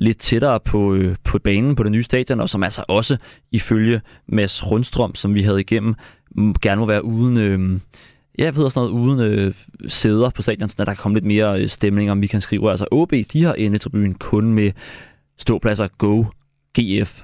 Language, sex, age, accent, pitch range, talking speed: Danish, male, 20-39, native, 105-125 Hz, 190 wpm